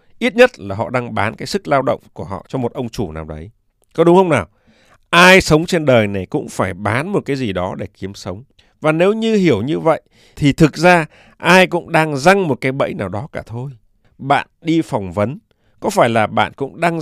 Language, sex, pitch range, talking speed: Vietnamese, male, 110-165 Hz, 235 wpm